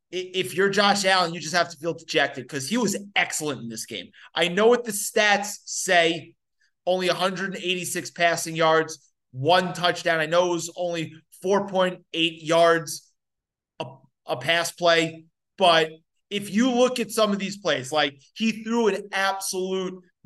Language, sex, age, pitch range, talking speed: English, male, 30-49, 155-190 Hz, 160 wpm